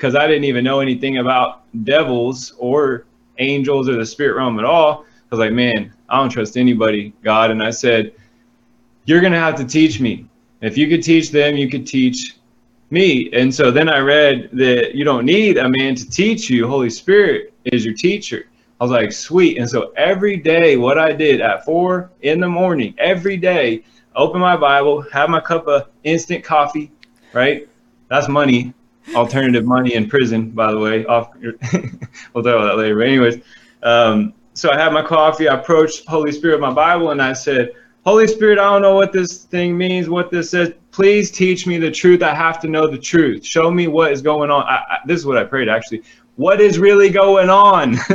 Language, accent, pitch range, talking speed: English, American, 125-170 Hz, 205 wpm